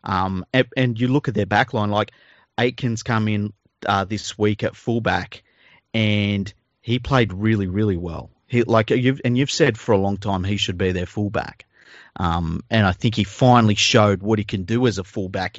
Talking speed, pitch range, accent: 205 wpm, 100-125 Hz, Australian